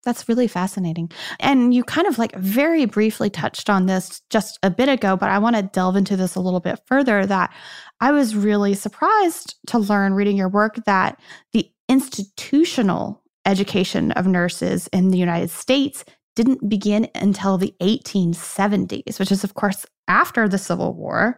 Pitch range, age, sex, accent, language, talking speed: 185-235 Hz, 20-39, female, American, English, 170 wpm